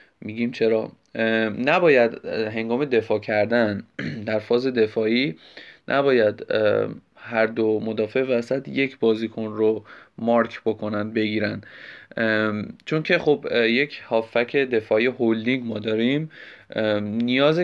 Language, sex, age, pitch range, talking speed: Persian, male, 20-39, 110-130 Hz, 100 wpm